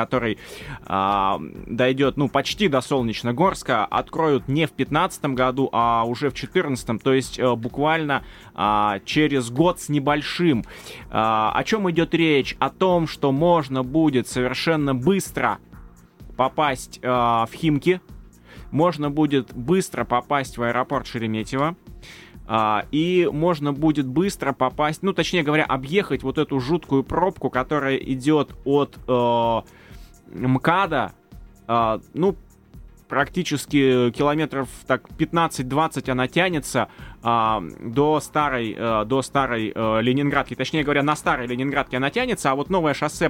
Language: Russian